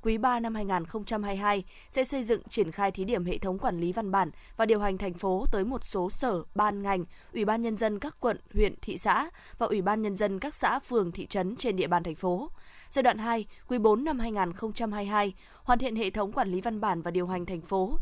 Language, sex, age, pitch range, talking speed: Vietnamese, female, 20-39, 190-235 Hz, 240 wpm